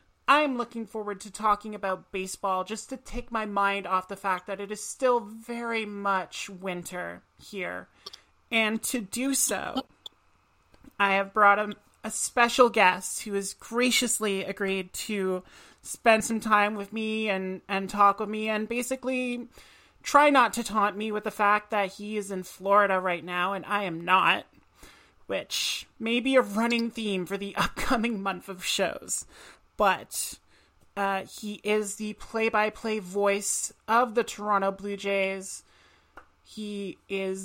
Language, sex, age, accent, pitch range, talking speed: English, male, 30-49, American, 195-225 Hz, 155 wpm